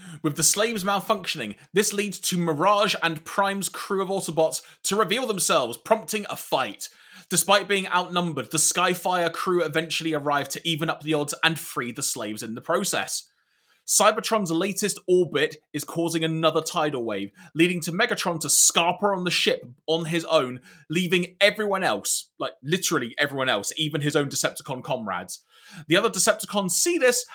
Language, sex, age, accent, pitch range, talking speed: English, male, 20-39, British, 155-200 Hz, 165 wpm